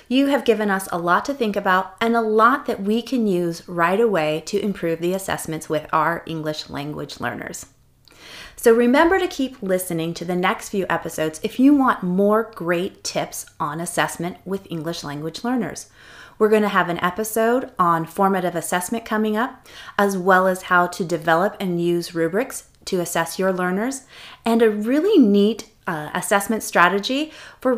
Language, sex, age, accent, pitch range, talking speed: English, female, 30-49, American, 175-225 Hz, 175 wpm